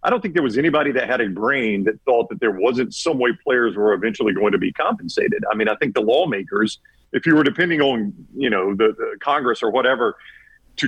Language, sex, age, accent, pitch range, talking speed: English, male, 50-69, American, 115-185 Hz, 225 wpm